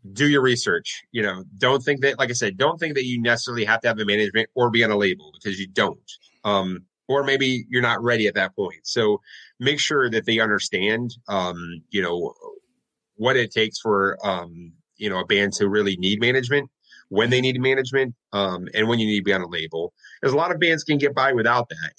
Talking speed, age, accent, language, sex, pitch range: 230 wpm, 30-49, American, English, male, 100-125 Hz